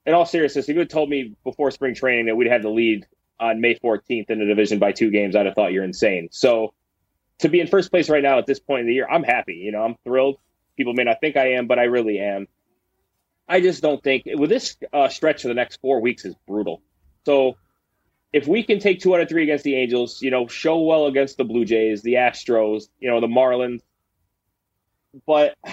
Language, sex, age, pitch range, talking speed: English, male, 20-39, 105-140 Hz, 240 wpm